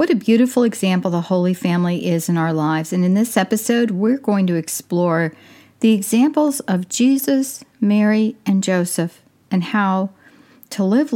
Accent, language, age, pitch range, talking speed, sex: American, English, 50-69, 180-240 Hz, 160 wpm, female